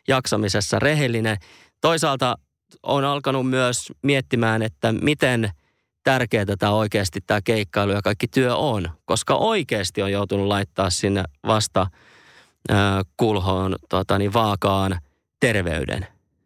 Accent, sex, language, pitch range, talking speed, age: native, male, Finnish, 100-135 Hz, 105 wpm, 30-49